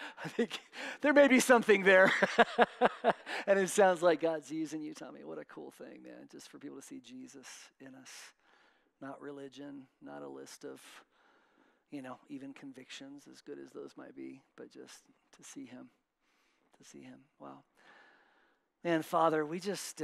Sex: male